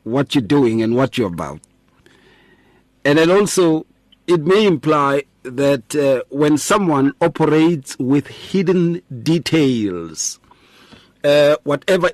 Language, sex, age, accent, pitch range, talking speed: English, male, 50-69, South African, 135-180 Hz, 115 wpm